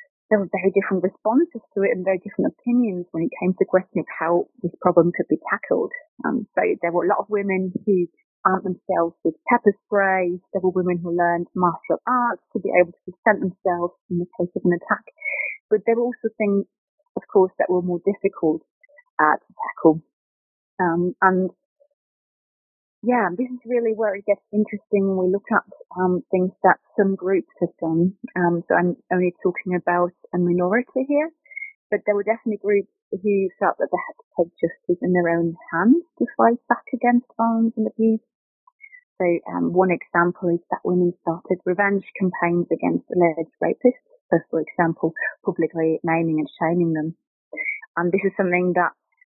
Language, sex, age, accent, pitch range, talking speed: English, female, 30-49, British, 175-230 Hz, 185 wpm